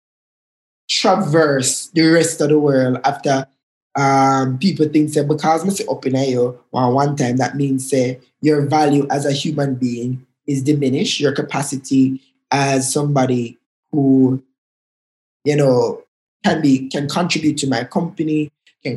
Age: 20-39